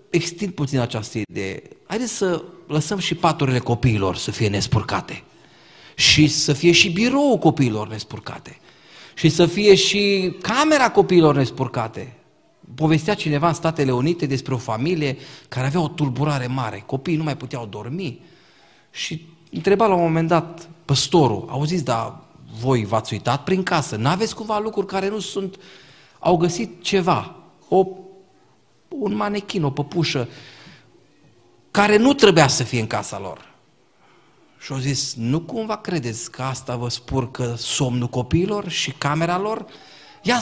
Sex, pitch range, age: male, 130-190 Hz, 40-59